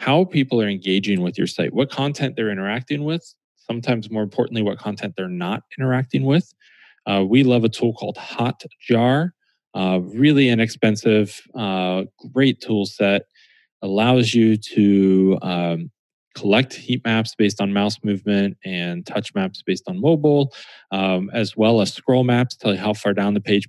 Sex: male